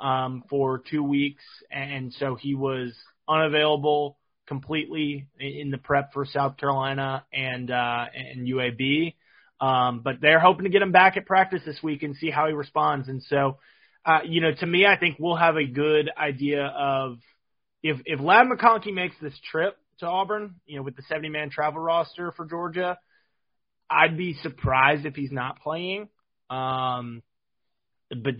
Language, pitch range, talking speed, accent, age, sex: English, 130-160 Hz, 165 wpm, American, 20-39, male